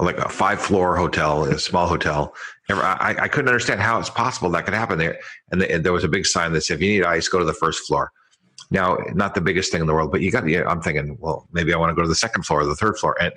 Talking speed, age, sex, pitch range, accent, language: 305 wpm, 50-69, male, 80-95 Hz, American, English